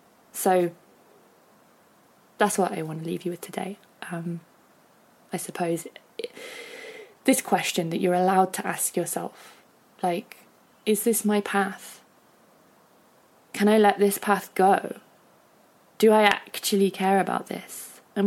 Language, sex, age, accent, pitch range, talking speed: English, female, 20-39, British, 185-215 Hz, 130 wpm